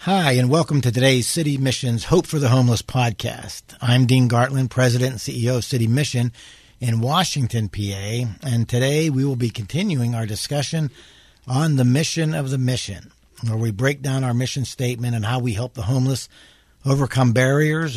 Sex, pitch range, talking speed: male, 115-135 Hz, 175 wpm